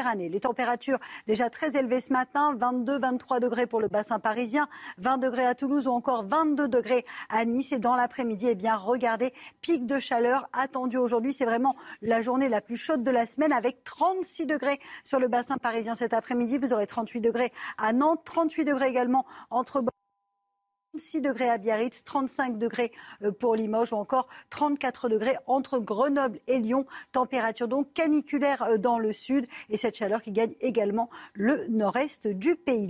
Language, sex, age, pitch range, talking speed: French, female, 40-59, 225-275 Hz, 175 wpm